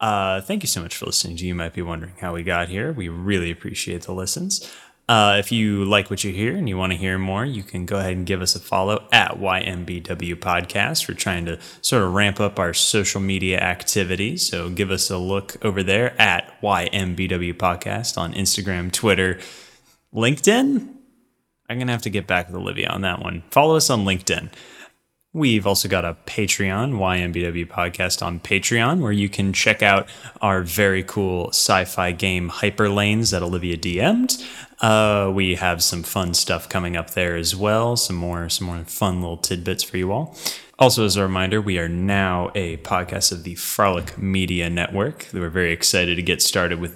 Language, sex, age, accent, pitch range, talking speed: English, male, 10-29, American, 90-110 Hz, 195 wpm